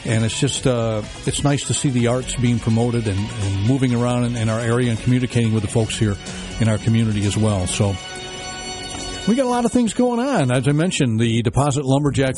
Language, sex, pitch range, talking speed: English, male, 115-140 Hz, 225 wpm